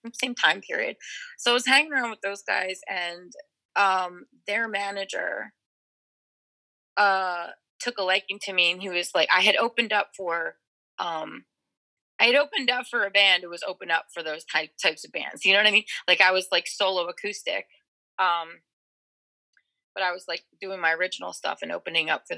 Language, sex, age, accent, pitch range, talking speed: English, female, 20-39, American, 175-210 Hz, 190 wpm